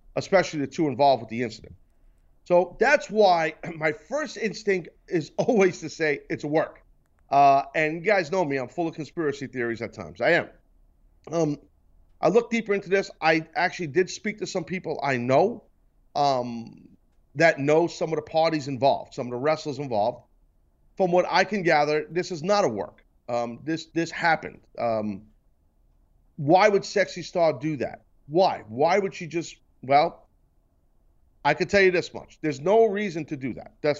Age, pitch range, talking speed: 40-59, 135-185 Hz, 180 wpm